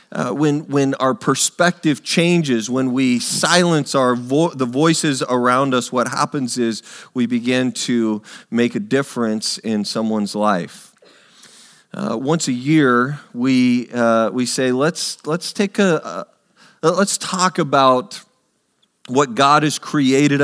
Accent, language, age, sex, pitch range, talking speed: American, English, 40-59, male, 120-155 Hz, 140 wpm